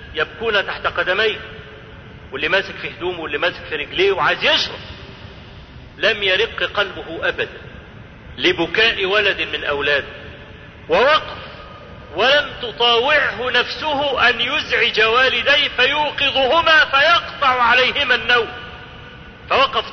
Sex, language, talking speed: male, Arabic, 100 wpm